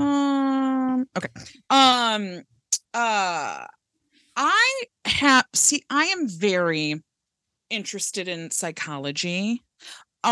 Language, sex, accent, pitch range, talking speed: English, female, American, 185-255 Hz, 80 wpm